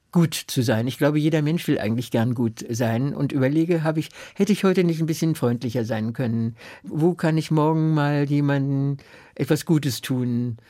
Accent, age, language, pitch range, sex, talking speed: German, 60-79, German, 145-180 Hz, male, 185 wpm